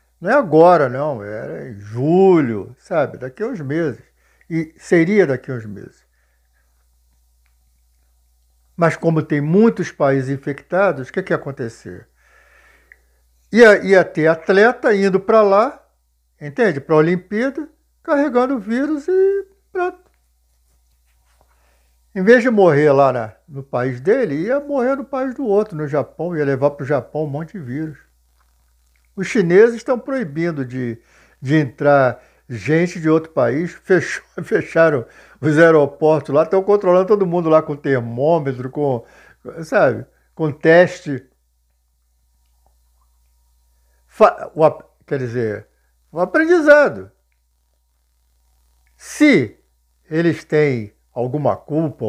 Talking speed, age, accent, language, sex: 120 wpm, 60-79, Brazilian, Portuguese, male